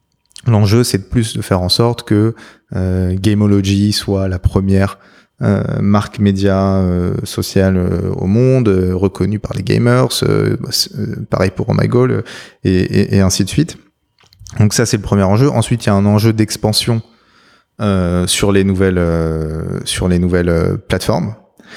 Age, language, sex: 20-39, French, male